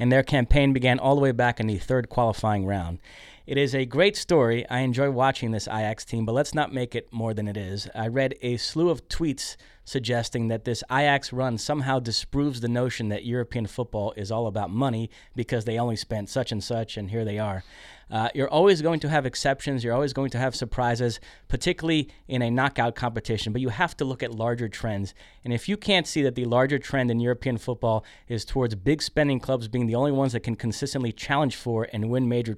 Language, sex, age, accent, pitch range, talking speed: English, male, 30-49, American, 115-140 Hz, 225 wpm